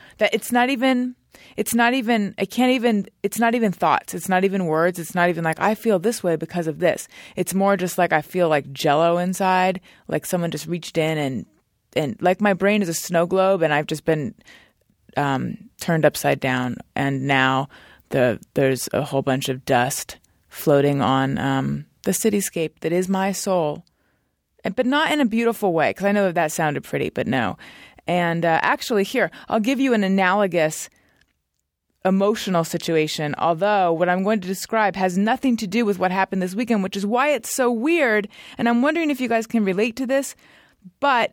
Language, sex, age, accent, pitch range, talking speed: English, female, 20-39, American, 165-225 Hz, 205 wpm